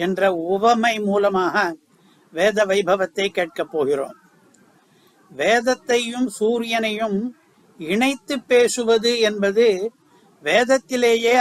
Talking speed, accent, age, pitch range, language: 55 wpm, native, 60-79, 200-240 Hz, Tamil